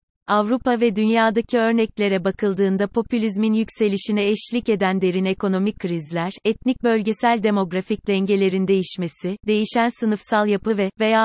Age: 30-49